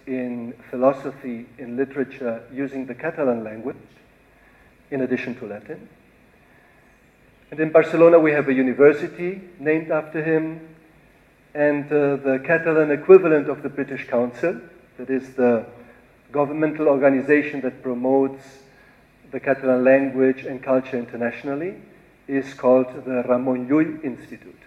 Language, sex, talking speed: English, male, 120 wpm